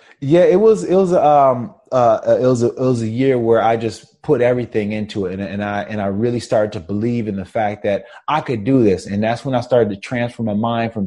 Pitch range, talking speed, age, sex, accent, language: 110-125 Hz, 255 wpm, 20-39, male, American, English